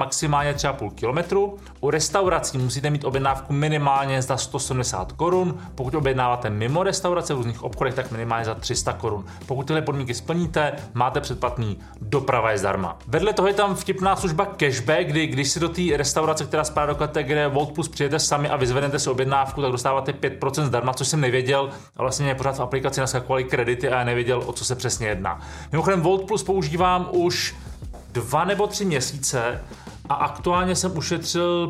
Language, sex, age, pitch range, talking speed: Czech, male, 30-49, 125-150 Hz, 180 wpm